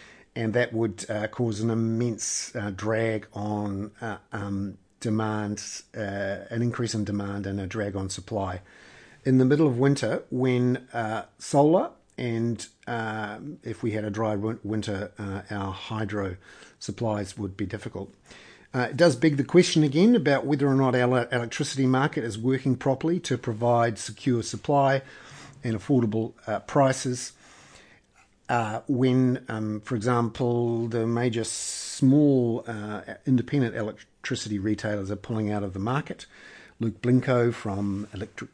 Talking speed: 145 wpm